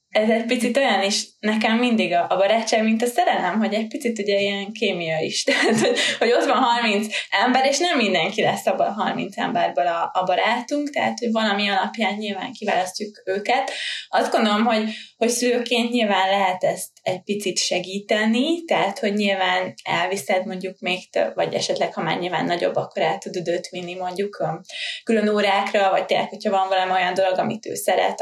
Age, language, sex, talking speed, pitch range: 20-39, Hungarian, female, 180 wpm, 195-235 Hz